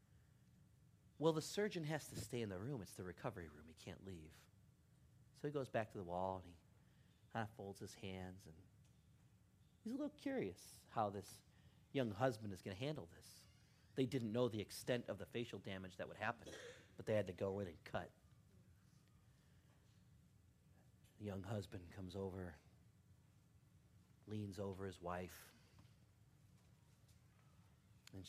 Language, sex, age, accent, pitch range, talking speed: English, male, 30-49, American, 95-120 Hz, 155 wpm